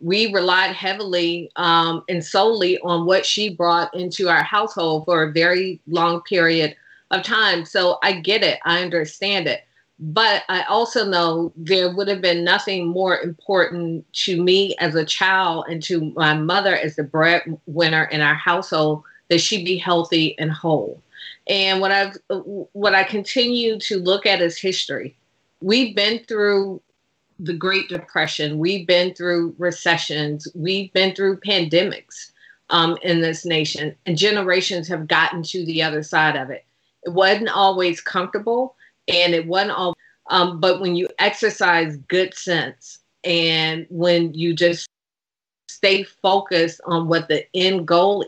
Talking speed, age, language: 155 wpm, 40-59, English